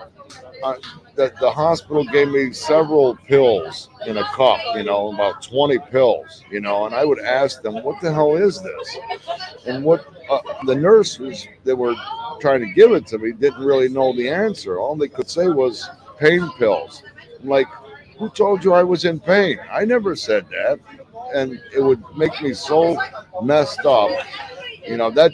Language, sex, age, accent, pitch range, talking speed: English, male, 60-79, American, 130-200 Hz, 180 wpm